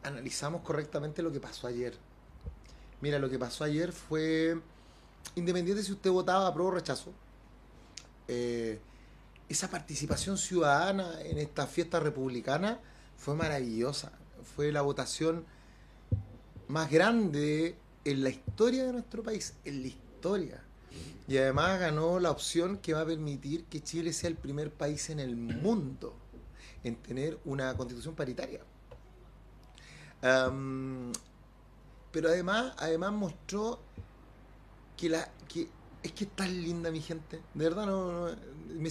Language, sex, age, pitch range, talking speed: Spanish, male, 30-49, 130-185 Hz, 130 wpm